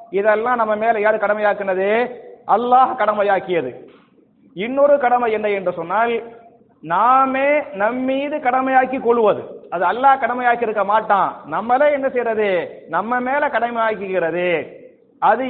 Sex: male